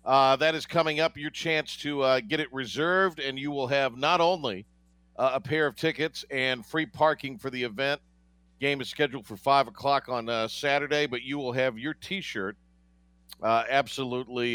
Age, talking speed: 50-69, 190 wpm